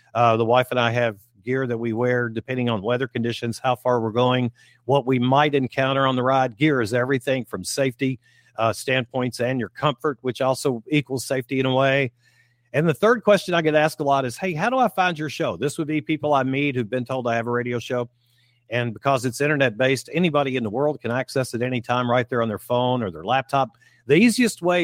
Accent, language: American, English